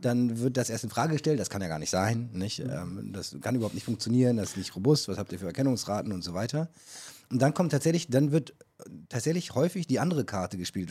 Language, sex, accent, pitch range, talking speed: German, male, German, 100-130 Hz, 235 wpm